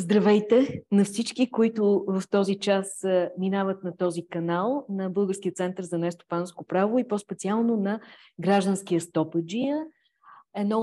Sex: female